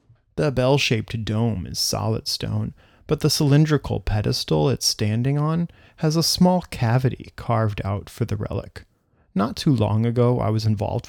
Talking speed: 155 wpm